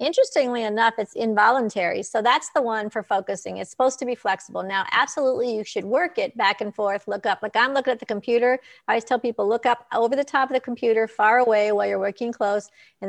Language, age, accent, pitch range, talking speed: English, 50-69, American, 205-250 Hz, 235 wpm